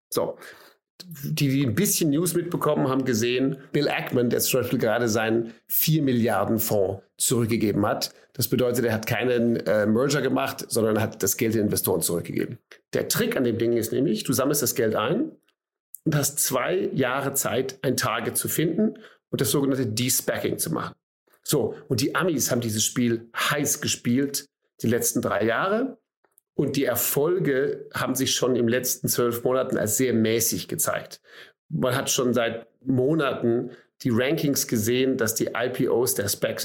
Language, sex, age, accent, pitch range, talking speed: German, male, 40-59, German, 115-140 Hz, 165 wpm